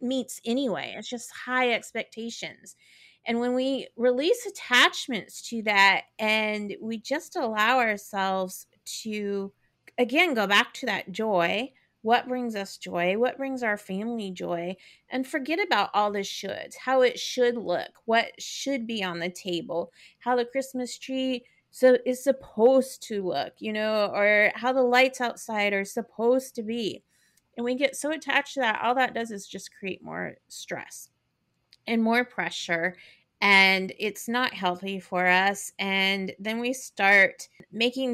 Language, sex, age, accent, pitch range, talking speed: English, female, 30-49, American, 195-250 Hz, 155 wpm